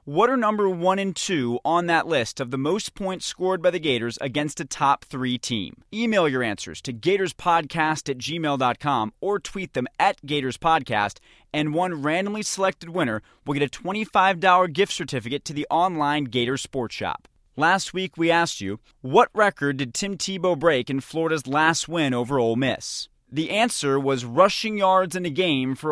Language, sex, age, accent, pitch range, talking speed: English, male, 30-49, American, 135-185 Hz, 180 wpm